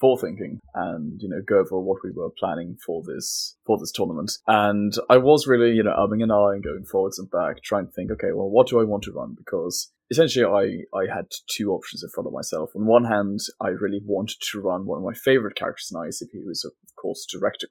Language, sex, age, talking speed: English, male, 20-39, 240 wpm